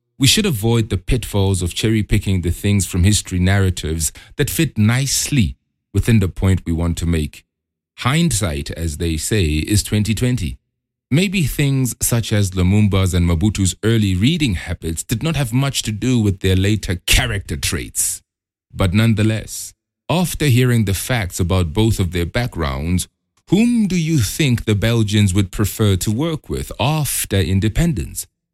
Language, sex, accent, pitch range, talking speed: English, male, Nigerian, 90-125 Hz, 155 wpm